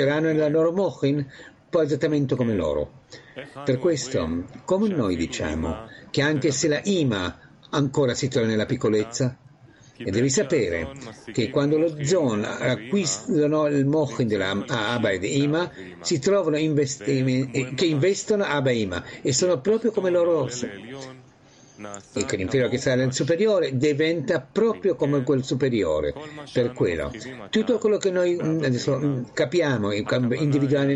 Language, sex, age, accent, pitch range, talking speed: Italian, male, 60-79, native, 125-160 Hz, 135 wpm